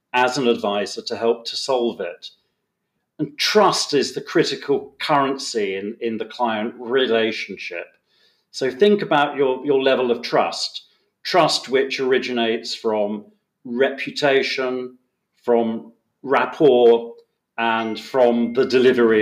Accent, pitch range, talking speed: British, 120-150 Hz, 120 wpm